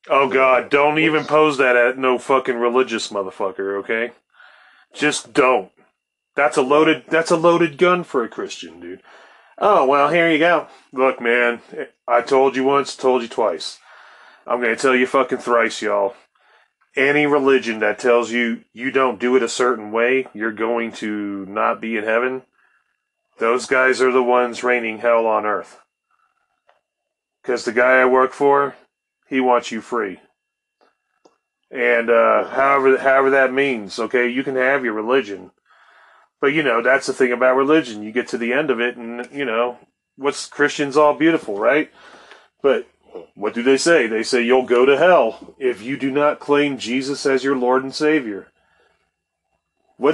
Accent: American